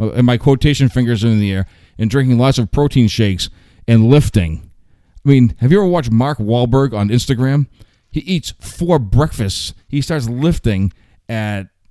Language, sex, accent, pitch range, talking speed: English, male, American, 105-135 Hz, 165 wpm